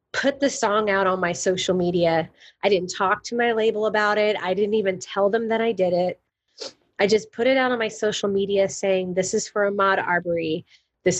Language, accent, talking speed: English, American, 220 wpm